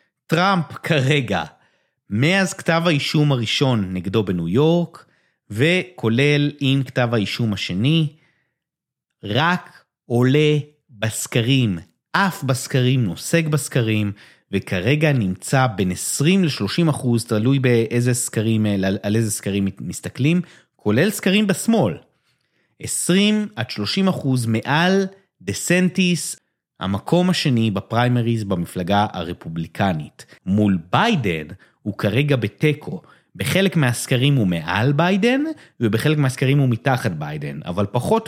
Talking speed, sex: 100 wpm, male